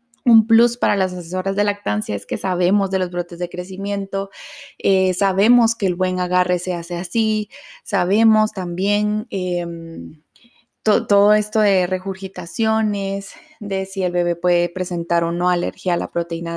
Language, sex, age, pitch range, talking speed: Spanish, female, 20-39, 180-220 Hz, 160 wpm